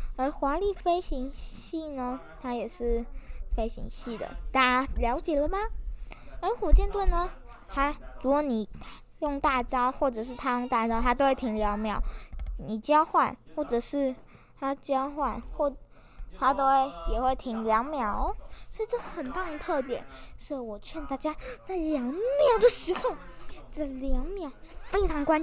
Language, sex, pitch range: Chinese, female, 250-390 Hz